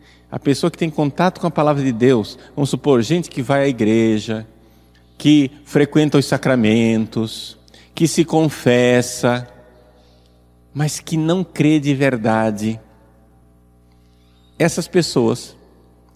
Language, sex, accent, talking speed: Portuguese, male, Brazilian, 120 wpm